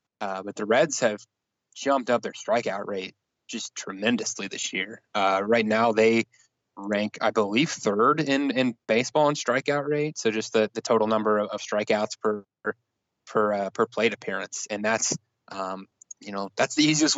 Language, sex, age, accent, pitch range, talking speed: English, male, 20-39, American, 105-120 Hz, 180 wpm